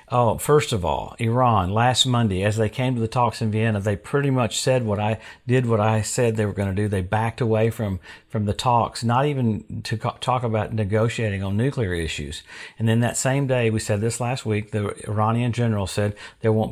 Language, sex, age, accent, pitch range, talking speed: English, male, 50-69, American, 110-130 Hz, 225 wpm